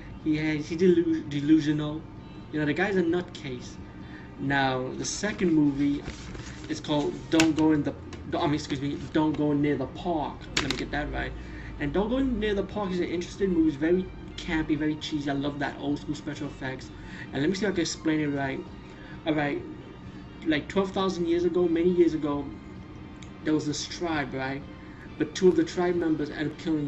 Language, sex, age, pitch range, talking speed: English, male, 30-49, 145-170 Hz, 200 wpm